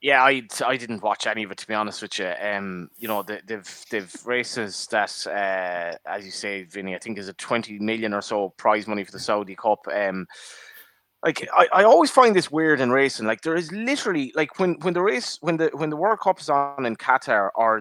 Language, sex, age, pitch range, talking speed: English, male, 20-39, 110-155 Hz, 235 wpm